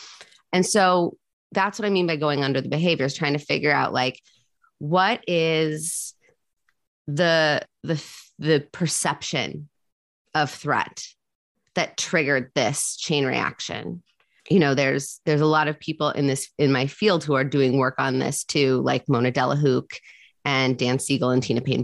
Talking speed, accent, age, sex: 160 wpm, American, 30-49, female